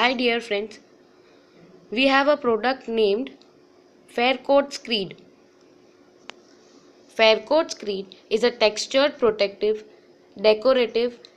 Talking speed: 90 wpm